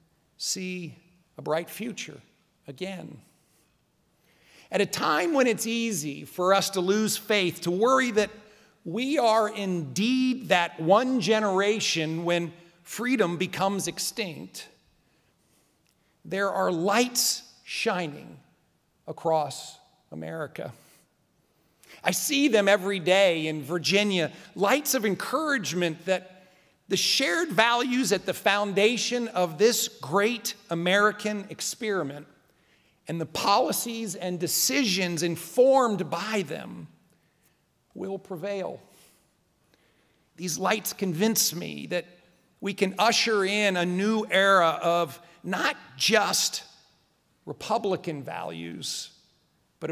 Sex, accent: male, American